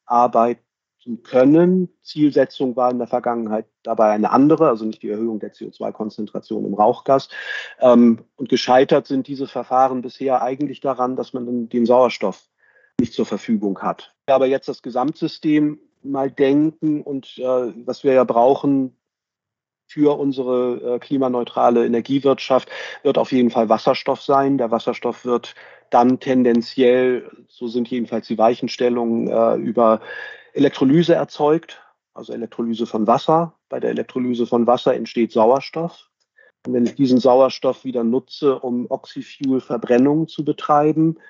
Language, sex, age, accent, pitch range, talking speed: German, male, 40-59, German, 120-135 Hz, 130 wpm